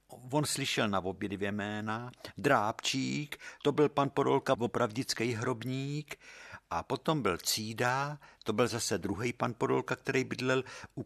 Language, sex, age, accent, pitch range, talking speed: Czech, male, 60-79, native, 90-140 Hz, 135 wpm